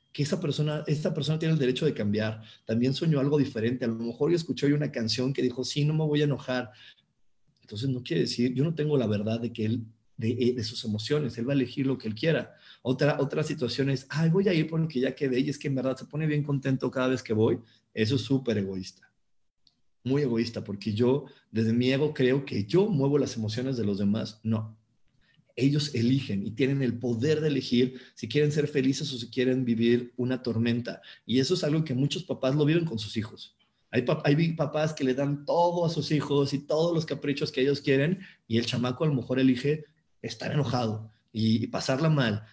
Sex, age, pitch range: male, 40-59, 115-145 Hz